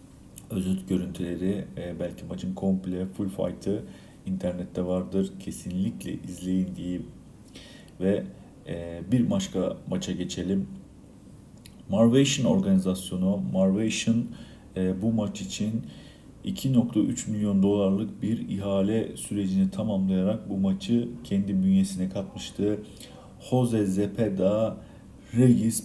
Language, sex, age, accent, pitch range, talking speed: Turkish, male, 50-69, native, 95-110 Hz, 90 wpm